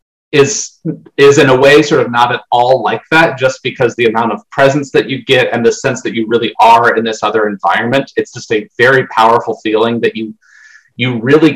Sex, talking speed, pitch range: male, 220 wpm, 115-150 Hz